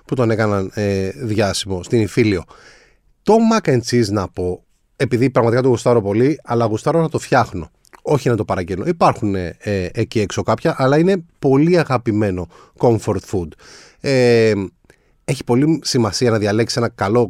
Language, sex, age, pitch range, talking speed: Greek, male, 30-49, 100-140 Hz, 145 wpm